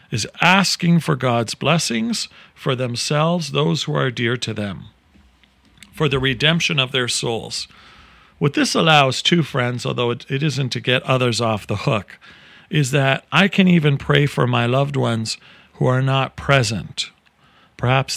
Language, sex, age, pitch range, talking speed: English, male, 40-59, 115-145 Hz, 160 wpm